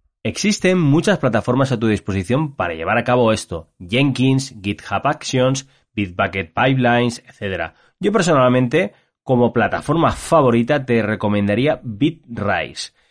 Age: 20-39